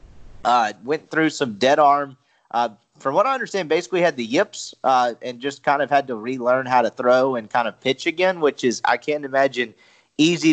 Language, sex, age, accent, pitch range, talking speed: English, male, 30-49, American, 130-170 Hz, 210 wpm